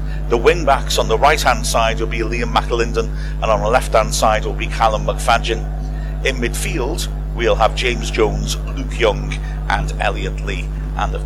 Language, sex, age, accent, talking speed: English, male, 50-69, British, 170 wpm